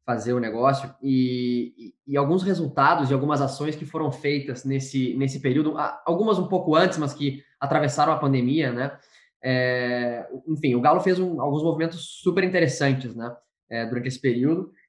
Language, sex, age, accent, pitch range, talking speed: Portuguese, male, 10-29, Brazilian, 130-160 Hz, 170 wpm